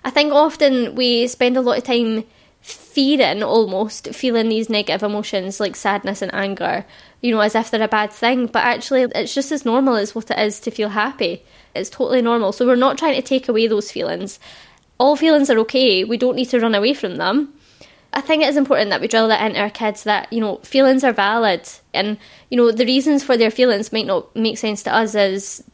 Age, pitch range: 20-39, 215-265 Hz